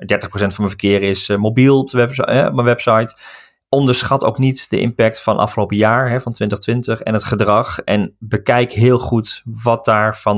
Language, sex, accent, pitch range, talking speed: Dutch, male, Dutch, 105-125 Hz, 195 wpm